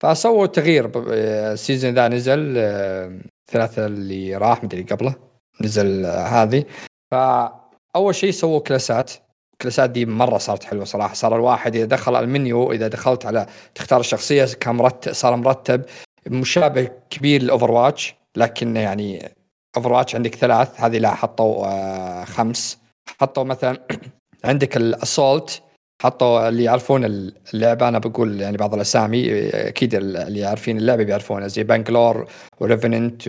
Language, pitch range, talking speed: Arabic, 110-130 Hz, 125 wpm